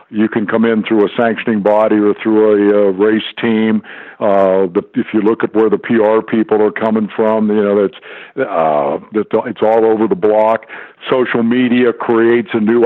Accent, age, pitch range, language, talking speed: American, 60-79, 105-130 Hz, English, 195 wpm